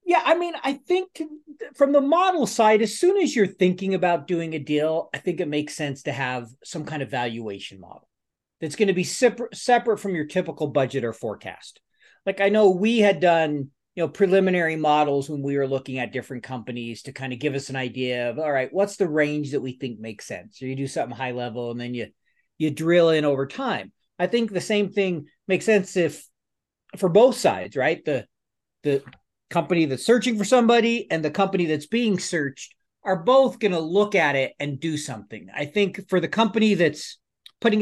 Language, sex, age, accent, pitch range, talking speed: English, male, 40-59, American, 140-200 Hz, 210 wpm